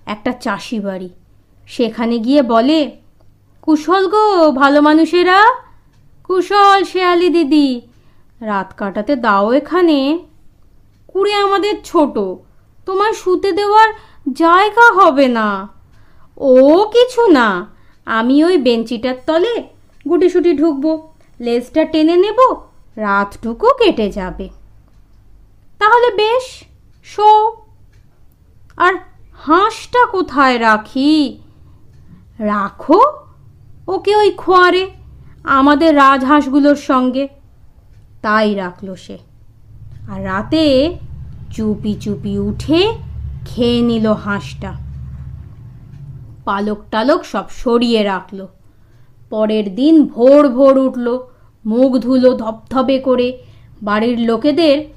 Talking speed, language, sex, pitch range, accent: 90 wpm, Bengali, female, 210-340 Hz, native